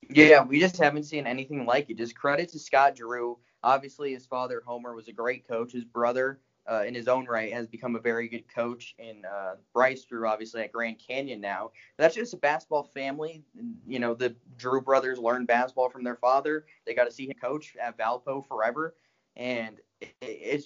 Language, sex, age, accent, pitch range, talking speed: English, male, 20-39, American, 120-145 Hz, 200 wpm